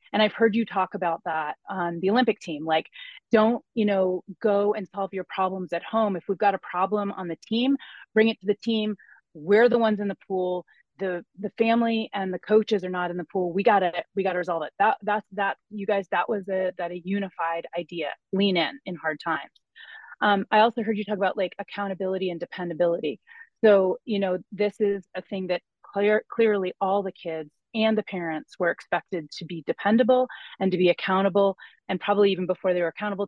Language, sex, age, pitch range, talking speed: English, female, 30-49, 175-210 Hz, 215 wpm